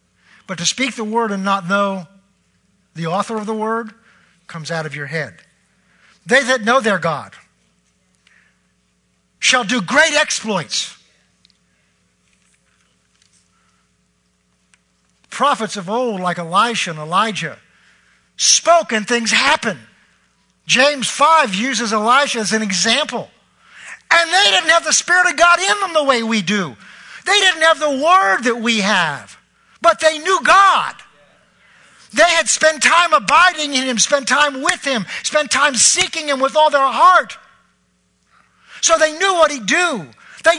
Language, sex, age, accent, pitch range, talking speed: English, male, 50-69, American, 200-320 Hz, 145 wpm